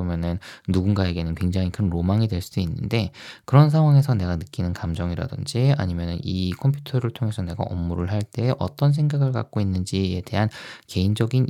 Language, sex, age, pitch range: Korean, male, 20-39, 90-130 Hz